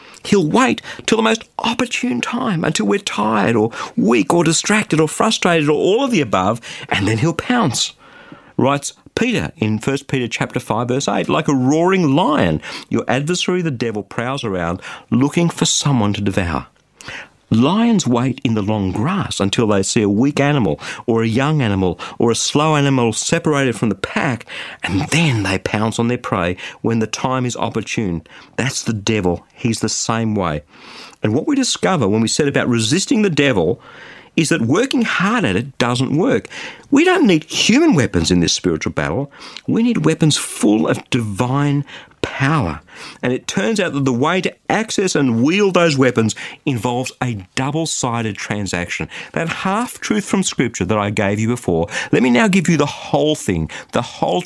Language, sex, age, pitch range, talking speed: English, male, 50-69, 105-165 Hz, 175 wpm